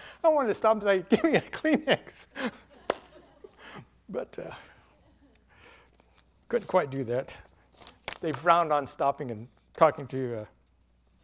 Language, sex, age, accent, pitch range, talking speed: English, male, 60-79, American, 120-200 Hz, 130 wpm